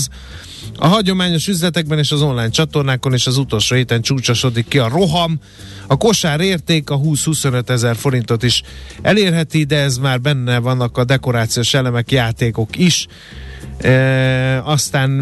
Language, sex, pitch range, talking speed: Hungarian, male, 125-155 Hz, 140 wpm